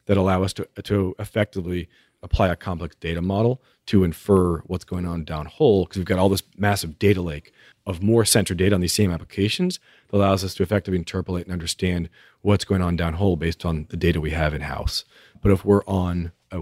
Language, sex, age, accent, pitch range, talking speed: English, male, 40-59, American, 85-100 Hz, 210 wpm